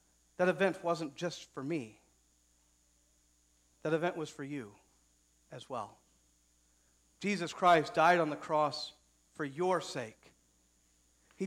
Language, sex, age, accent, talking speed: English, male, 40-59, American, 120 wpm